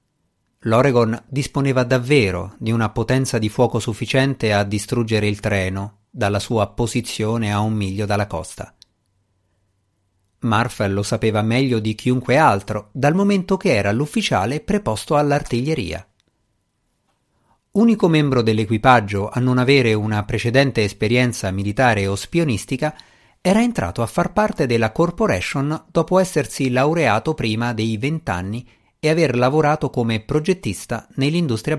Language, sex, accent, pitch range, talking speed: Italian, male, native, 105-145 Hz, 125 wpm